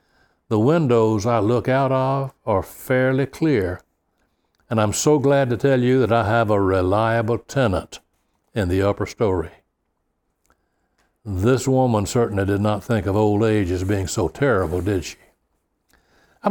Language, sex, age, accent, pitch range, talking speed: English, male, 60-79, American, 95-130 Hz, 155 wpm